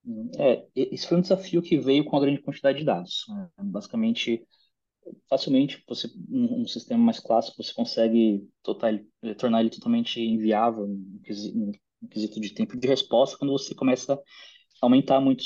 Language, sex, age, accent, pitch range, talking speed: Portuguese, male, 20-39, Brazilian, 115-160 Hz, 155 wpm